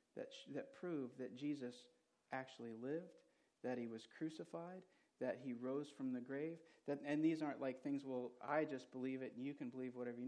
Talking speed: 205 wpm